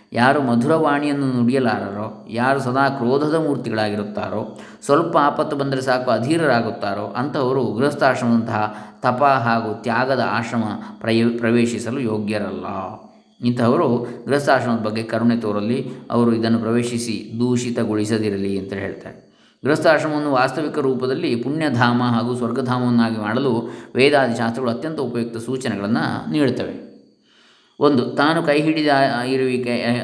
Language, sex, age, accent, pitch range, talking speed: Kannada, male, 20-39, native, 115-135 Hz, 100 wpm